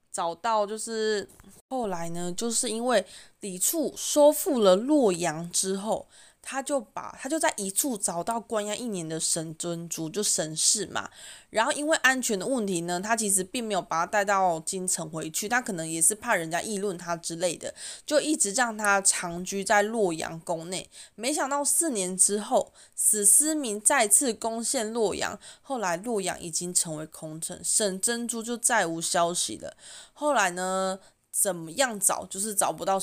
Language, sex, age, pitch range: Chinese, female, 20-39, 175-240 Hz